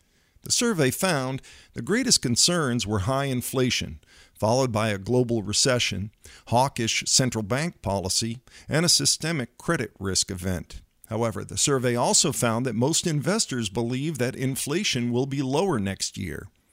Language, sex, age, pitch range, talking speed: English, male, 50-69, 110-140 Hz, 145 wpm